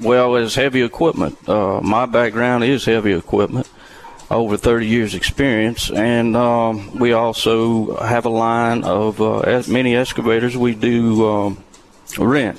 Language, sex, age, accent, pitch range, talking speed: English, male, 40-59, American, 110-125 Hz, 145 wpm